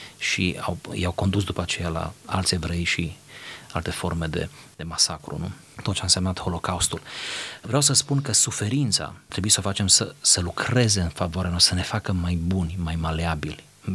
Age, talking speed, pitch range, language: 30-49, 180 wpm, 90-125 Hz, Romanian